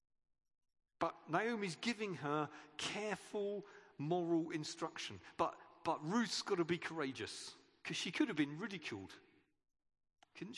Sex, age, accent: male, 40-59, British